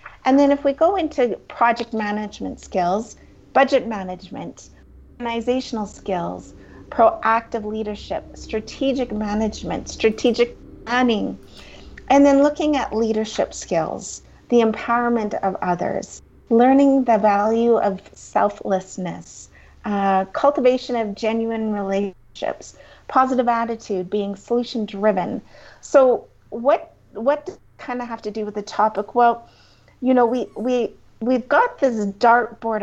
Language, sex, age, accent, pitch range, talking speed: English, female, 30-49, American, 210-250 Hz, 115 wpm